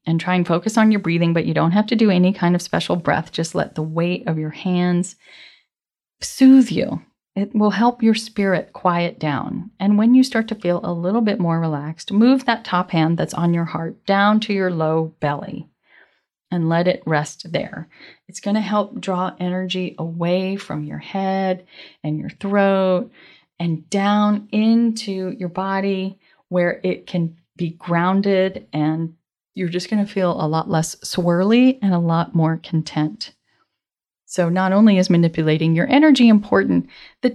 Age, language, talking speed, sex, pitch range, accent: 30-49, English, 175 wpm, female, 165-210 Hz, American